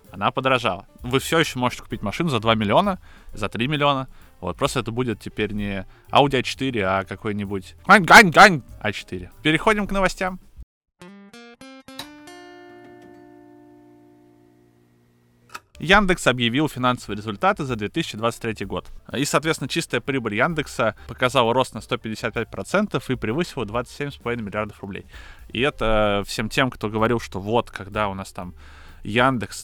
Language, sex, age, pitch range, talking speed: Russian, male, 20-39, 100-130 Hz, 125 wpm